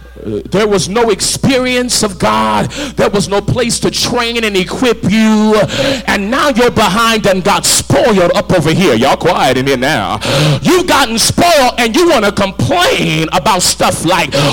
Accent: American